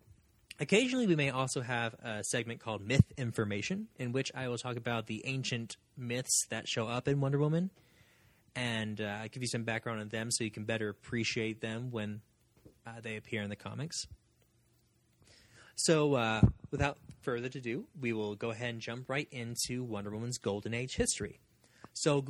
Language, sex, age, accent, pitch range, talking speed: English, male, 20-39, American, 115-145 Hz, 180 wpm